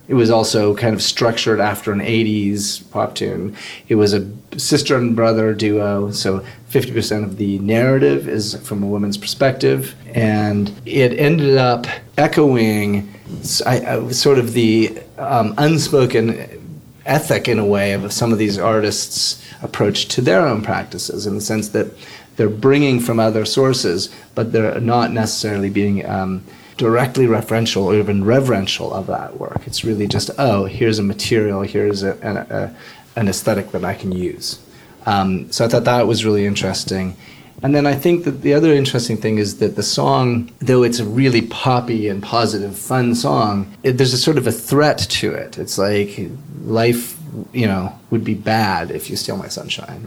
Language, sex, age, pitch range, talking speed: English, male, 30-49, 100-120 Hz, 175 wpm